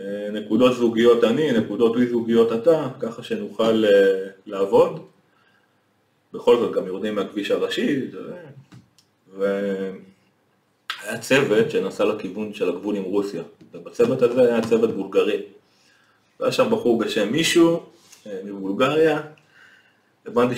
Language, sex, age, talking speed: Hebrew, male, 30-49, 105 wpm